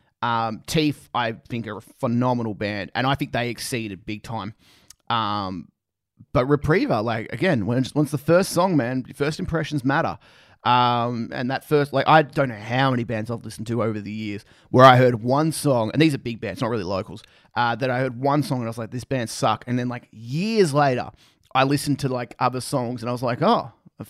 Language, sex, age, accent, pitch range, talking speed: English, male, 30-49, Australian, 115-145 Hz, 220 wpm